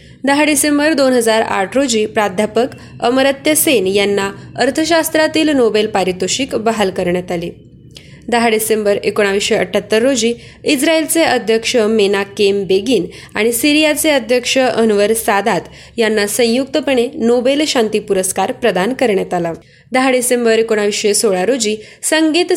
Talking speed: 105 wpm